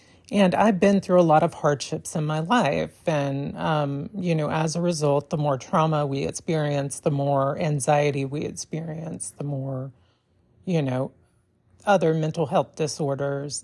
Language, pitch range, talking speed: English, 140-175 Hz, 160 wpm